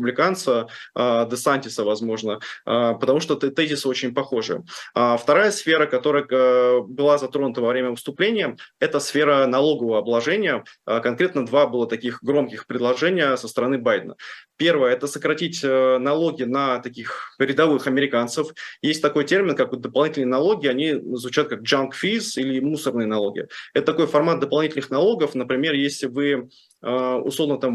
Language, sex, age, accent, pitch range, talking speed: Russian, male, 20-39, native, 125-145 Hz, 130 wpm